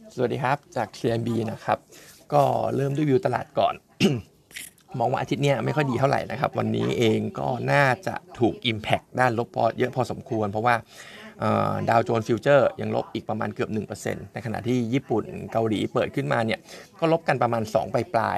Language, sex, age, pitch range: Thai, male, 20-39, 110-135 Hz